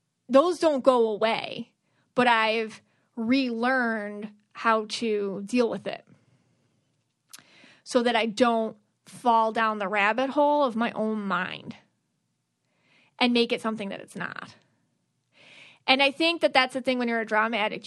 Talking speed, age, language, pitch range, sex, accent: 150 wpm, 30-49, English, 210-255 Hz, female, American